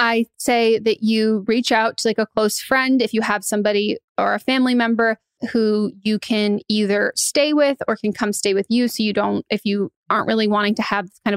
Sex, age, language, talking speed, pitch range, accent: female, 20-39, English, 220 wpm, 200-230 Hz, American